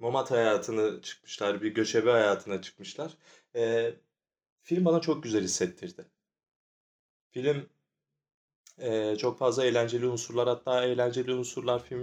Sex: male